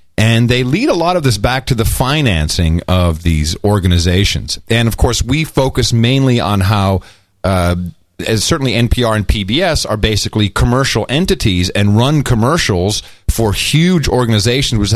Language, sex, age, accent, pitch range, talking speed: English, male, 40-59, American, 95-125 Hz, 155 wpm